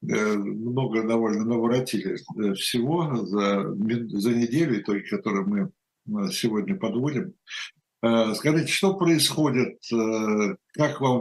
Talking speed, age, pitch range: 85 wpm, 60-79, 110-135 Hz